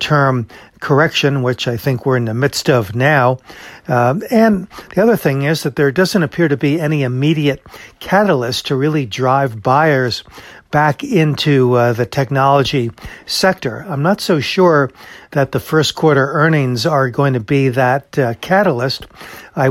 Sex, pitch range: male, 125-150 Hz